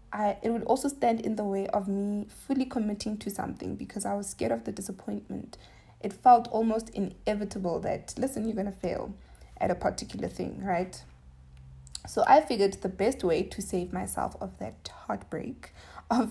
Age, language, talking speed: 20-39, English, 175 wpm